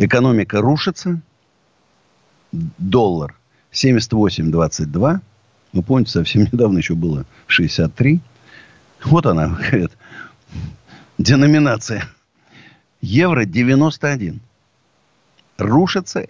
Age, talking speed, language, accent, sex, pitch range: 50-69, 65 wpm, Russian, native, male, 100-155 Hz